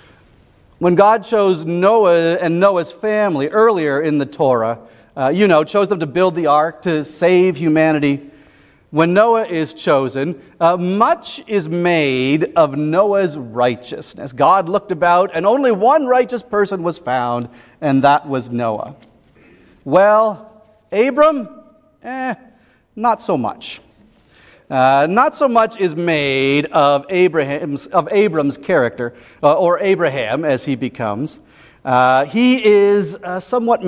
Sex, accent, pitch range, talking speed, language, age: male, American, 140-205 Hz, 135 wpm, English, 40-59